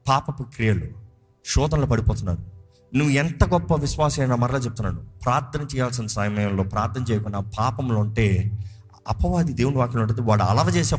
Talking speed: 130 wpm